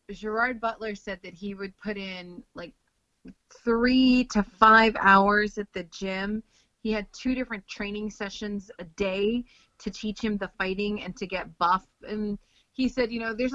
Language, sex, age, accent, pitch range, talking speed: English, female, 30-49, American, 165-210 Hz, 175 wpm